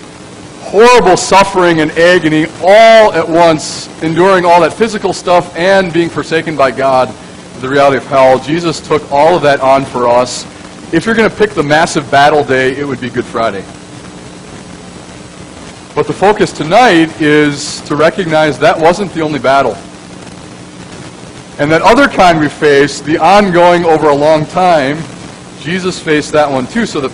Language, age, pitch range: English, 40-59, 120-165 Hz